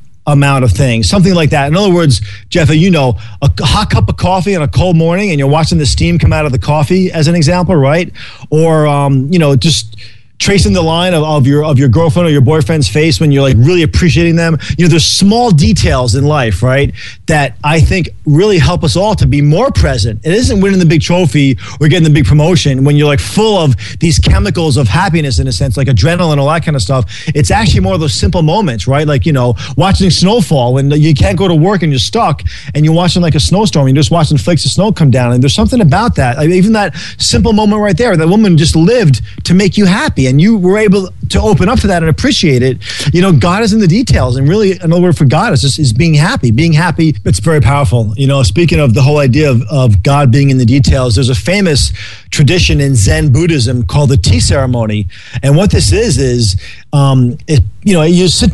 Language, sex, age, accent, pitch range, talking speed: English, male, 30-49, American, 125-170 Hz, 240 wpm